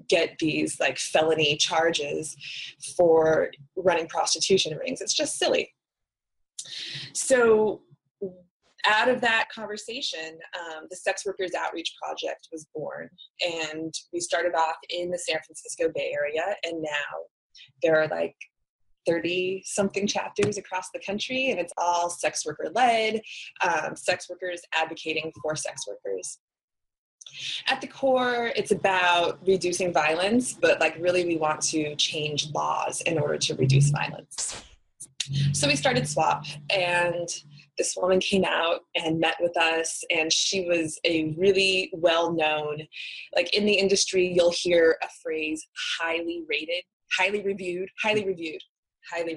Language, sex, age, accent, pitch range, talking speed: English, female, 20-39, American, 160-200 Hz, 135 wpm